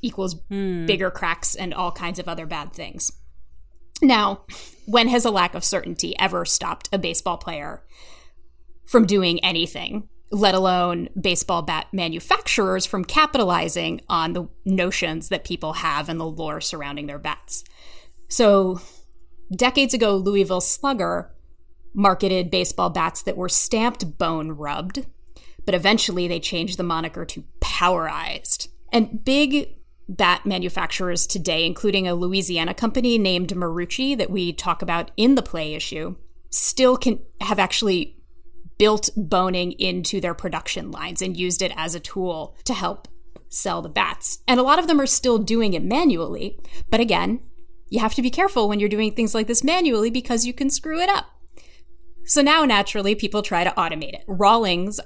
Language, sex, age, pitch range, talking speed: English, female, 30-49, 175-225 Hz, 155 wpm